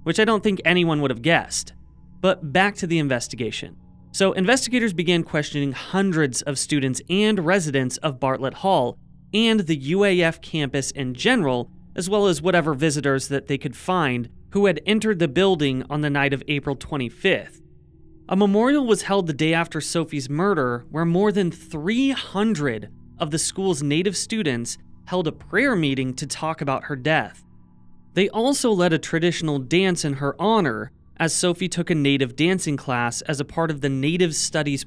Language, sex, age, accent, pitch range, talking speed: English, male, 30-49, American, 135-185 Hz, 175 wpm